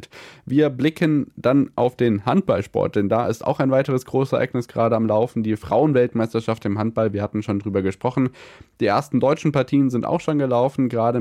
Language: German